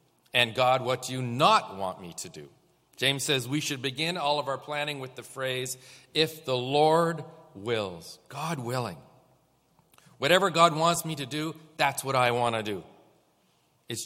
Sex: male